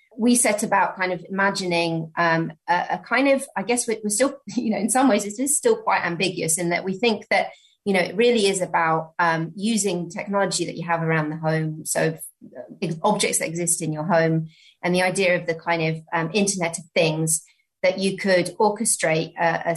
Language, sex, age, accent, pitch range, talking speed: English, female, 30-49, British, 160-205 Hz, 210 wpm